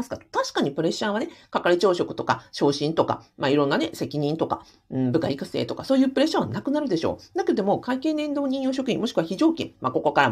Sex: female